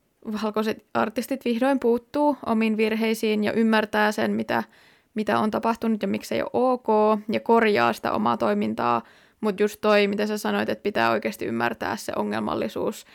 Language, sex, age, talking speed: Finnish, female, 20-39, 155 wpm